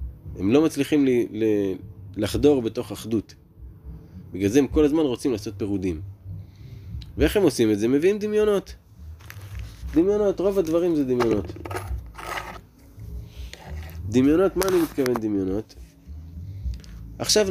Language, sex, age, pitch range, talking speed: Hebrew, male, 20-39, 90-145 Hz, 110 wpm